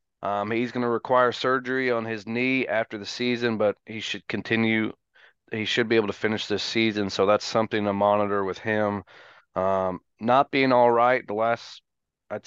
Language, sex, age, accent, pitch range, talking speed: English, male, 30-49, American, 100-115 Hz, 190 wpm